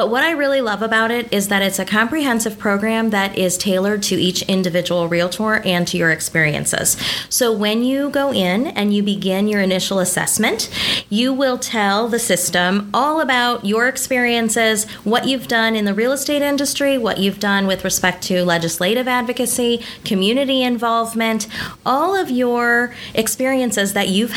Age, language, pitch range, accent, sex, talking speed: 30-49, English, 195-245 Hz, American, female, 165 wpm